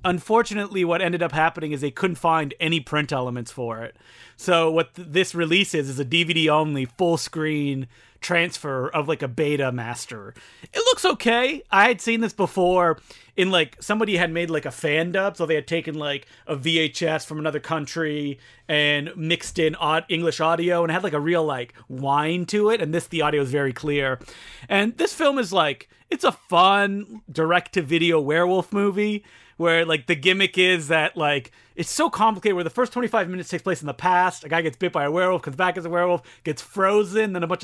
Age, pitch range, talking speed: 30-49, 155-195 Hz, 200 wpm